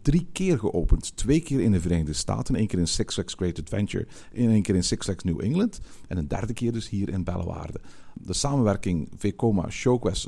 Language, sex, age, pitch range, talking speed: Dutch, male, 50-69, 95-140 Hz, 205 wpm